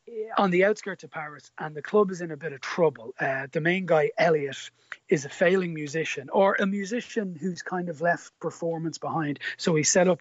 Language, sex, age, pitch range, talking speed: English, male, 30-49, 145-175 Hz, 210 wpm